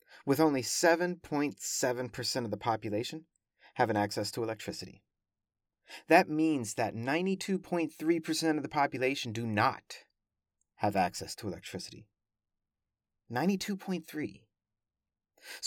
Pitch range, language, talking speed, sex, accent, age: 105-160 Hz, English, 95 wpm, male, American, 30-49